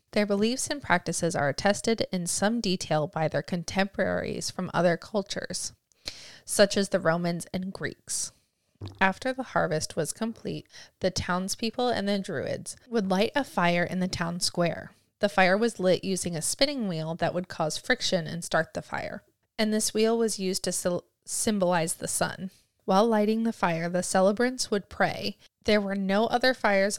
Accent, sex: American, female